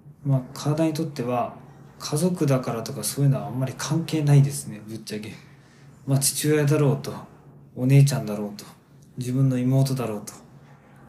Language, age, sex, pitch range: Japanese, 20-39, male, 135-165 Hz